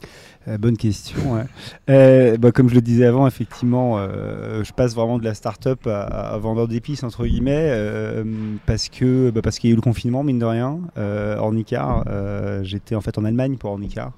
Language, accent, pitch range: French, French, 105-120 Hz